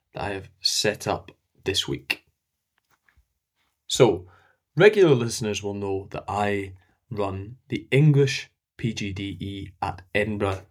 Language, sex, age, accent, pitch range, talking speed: English, male, 20-39, British, 100-130 Hz, 110 wpm